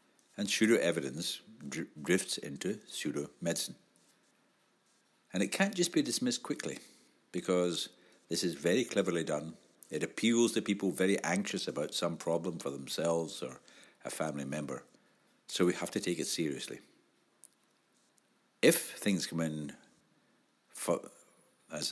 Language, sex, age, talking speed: English, male, 60-79, 125 wpm